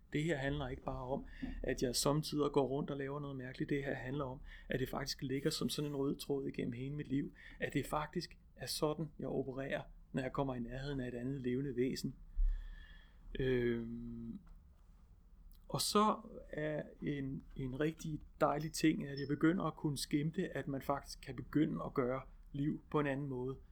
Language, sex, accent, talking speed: Danish, male, native, 190 wpm